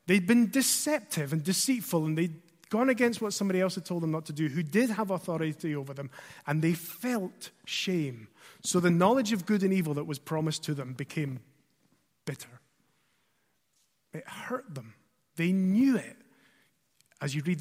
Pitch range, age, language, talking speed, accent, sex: 150-210 Hz, 30-49, English, 175 wpm, British, male